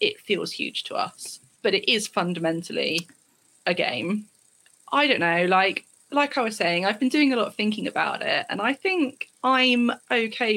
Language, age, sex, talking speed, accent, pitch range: English, 20-39, female, 185 wpm, British, 180-220 Hz